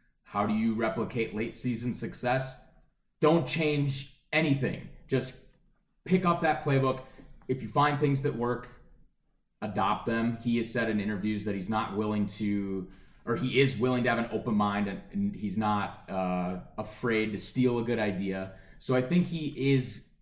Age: 20-39